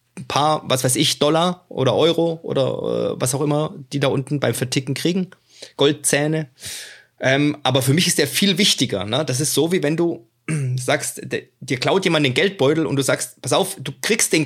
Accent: German